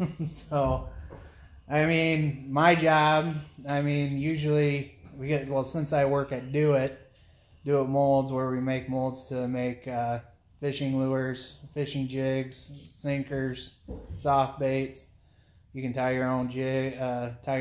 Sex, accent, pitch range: male, American, 120-140 Hz